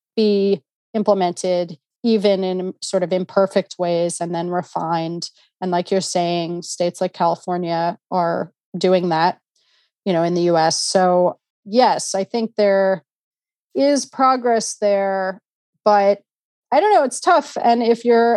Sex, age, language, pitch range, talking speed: female, 30-49, English, 180-215 Hz, 140 wpm